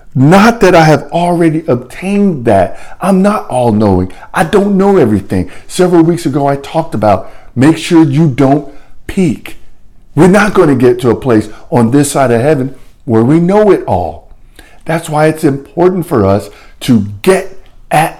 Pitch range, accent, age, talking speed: 110-170 Hz, American, 50-69, 170 wpm